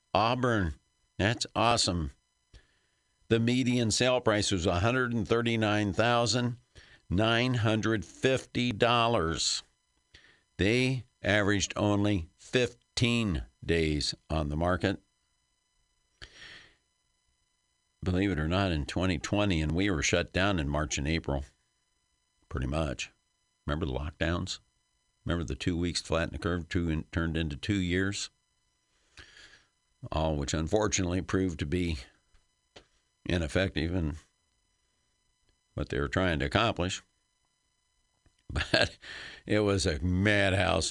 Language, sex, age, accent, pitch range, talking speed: English, male, 50-69, American, 75-100 Hz, 105 wpm